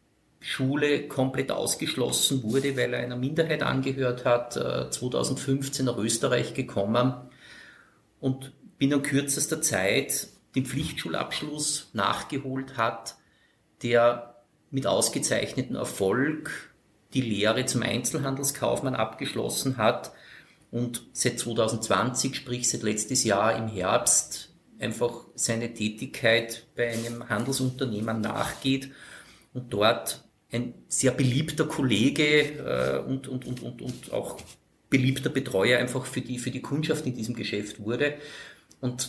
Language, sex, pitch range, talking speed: German, male, 115-135 Hz, 110 wpm